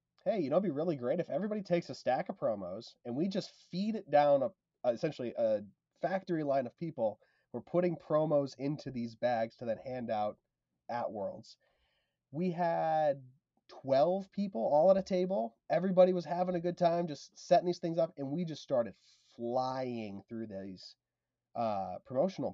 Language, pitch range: English, 110-170 Hz